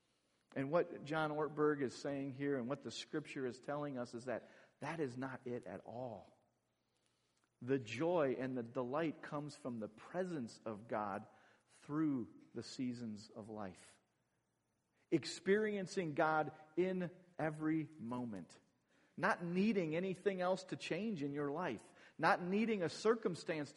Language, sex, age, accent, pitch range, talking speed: English, male, 40-59, American, 130-180 Hz, 140 wpm